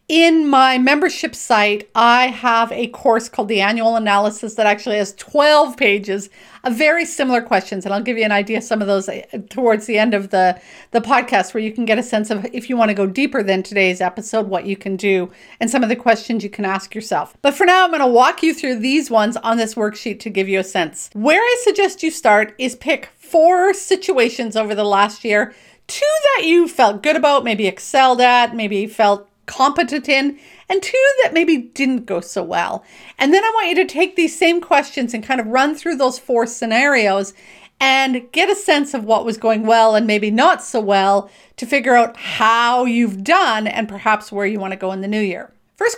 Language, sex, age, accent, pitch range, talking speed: English, female, 40-59, American, 210-285 Hz, 220 wpm